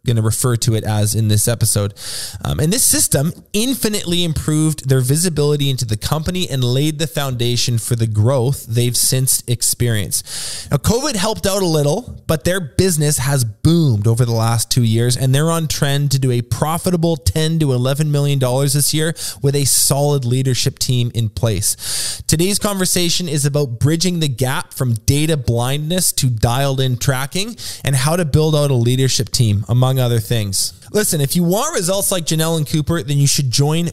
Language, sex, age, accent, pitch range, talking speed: English, male, 20-39, American, 120-160 Hz, 185 wpm